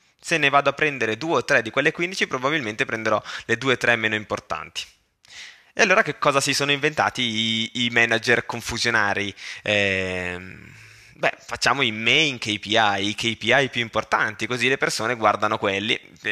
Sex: male